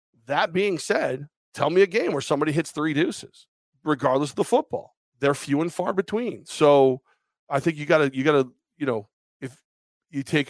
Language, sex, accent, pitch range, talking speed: English, male, American, 130-150 Hz, 200 wpm